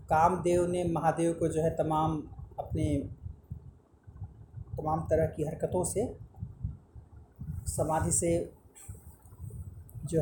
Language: Hindi